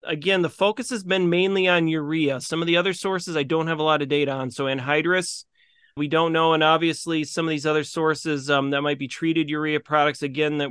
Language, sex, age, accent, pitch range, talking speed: English, male, 30-49, American, 140-170 Hz, 235 wpm